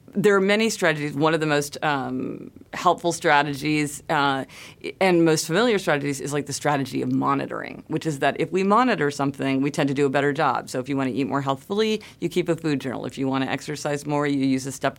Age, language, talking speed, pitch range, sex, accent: 40-59, English, 235 wpm, 135-165 Hz, female, American